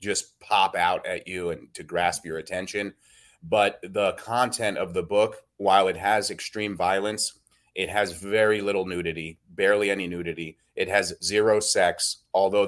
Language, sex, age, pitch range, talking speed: English, male, 30-49, 95-145 Hz, 160 wpm